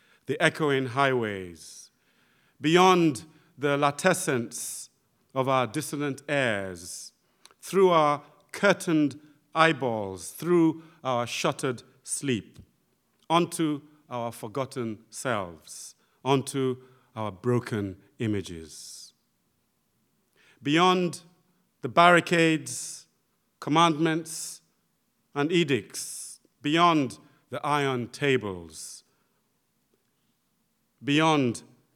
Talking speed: 70 wpm